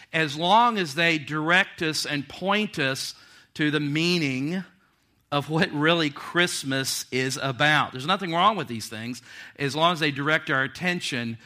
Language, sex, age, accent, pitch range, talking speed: English, male, 50-69, American, 125-150 Hz, 160 wpm